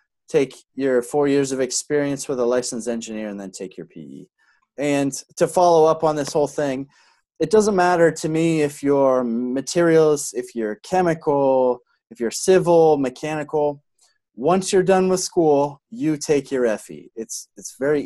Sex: male